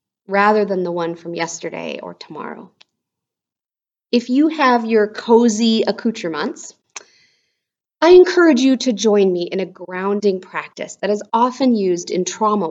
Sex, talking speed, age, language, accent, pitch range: female, 140 wpm, 30-49, English, American, 180-250 Hz